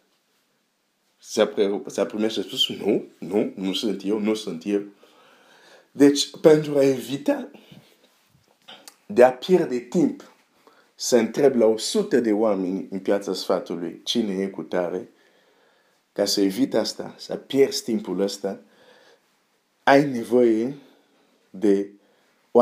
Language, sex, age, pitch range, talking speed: Romanian, male, 50-69, 100-135 Hz, 125 wpm